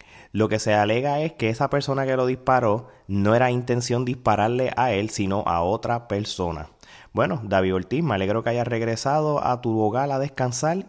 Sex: male